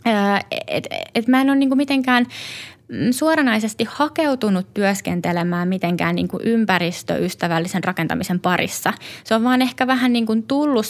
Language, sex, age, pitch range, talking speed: Finnish, female, 20-39, 165-200 Hz, 140 wpm